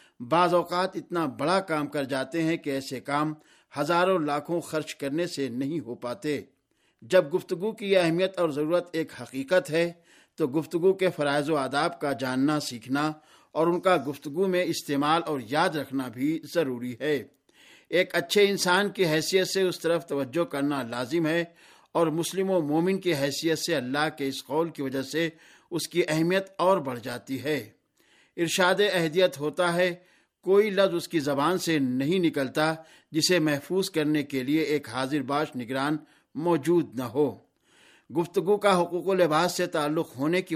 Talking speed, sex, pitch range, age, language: 170 wpm, male, 145-180 Hz, 50-69, Urdu